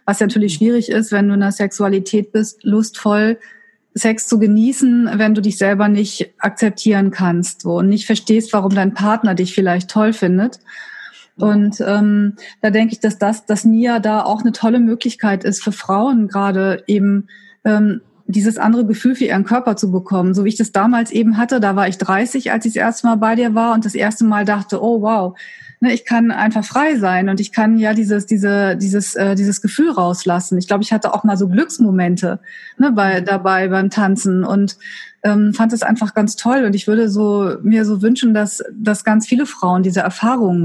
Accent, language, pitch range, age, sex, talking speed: German, German, 200-230 Hz, 30-49, female, 200 wpm